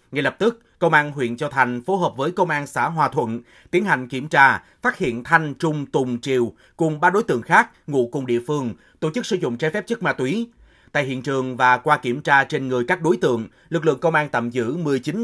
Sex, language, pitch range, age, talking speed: male, Vietnamese, 125-170 Hz, 30-49, 250 wpm